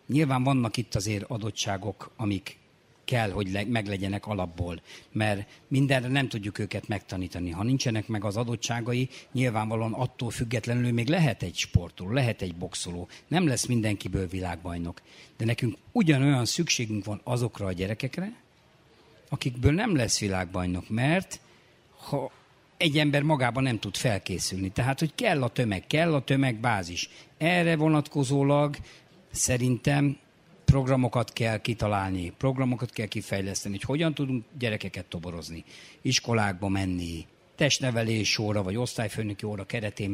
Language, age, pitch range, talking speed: Hungarian, 60-79, 100-135 Hz, 130 wpm